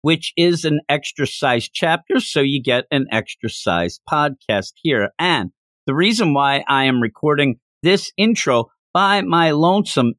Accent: American